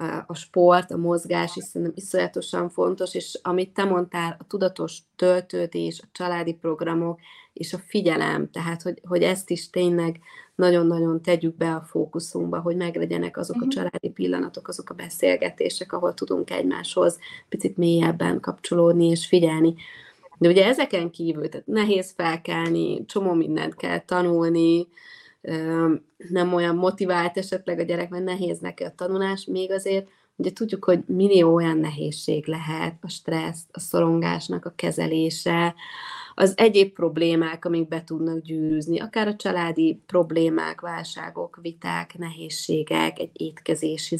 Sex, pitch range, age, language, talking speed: female, 165-180 Hz, 30-49, Hungarian, 135 wpm